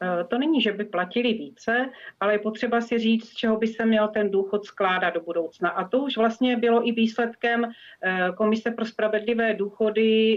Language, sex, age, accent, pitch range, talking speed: Czech, female, 40-59, native, 195-230 Hz, 185 wpm